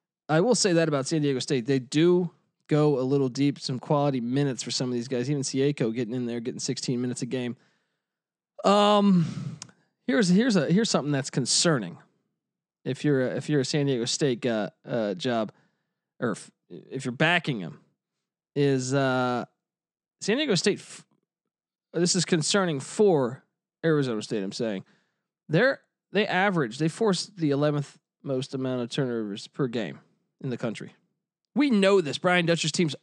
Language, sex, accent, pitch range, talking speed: English, male, American, 135-175 Hz, 165 wpm